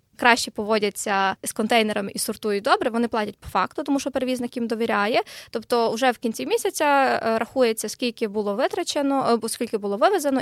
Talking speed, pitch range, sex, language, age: 165 wpm, 220-270 Hz, female, Ukrainian, 20-39